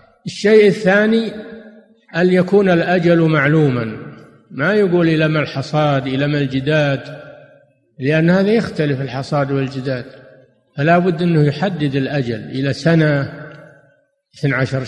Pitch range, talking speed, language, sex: 140-175 Hz, 110 wpm, Arabic, male